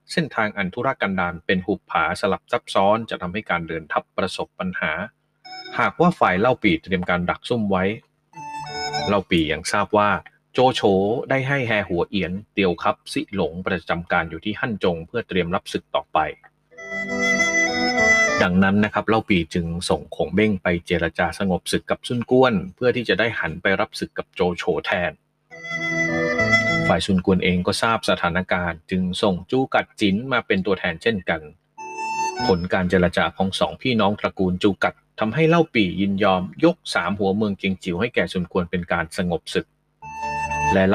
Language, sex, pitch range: Thai, male, 95-155 Hz